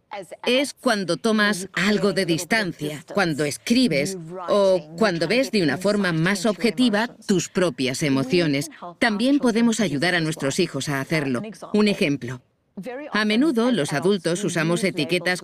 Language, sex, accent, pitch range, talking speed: Spanish, female, Spanish, 160-230 Hz, 135 wpm